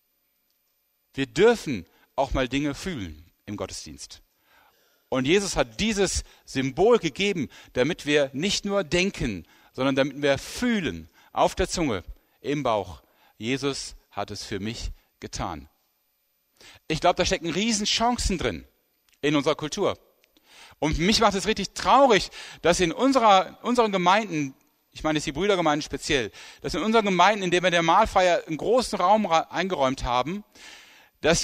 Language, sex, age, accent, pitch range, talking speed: German, male, 10-29, German, 135-195 Hz, 145 wpm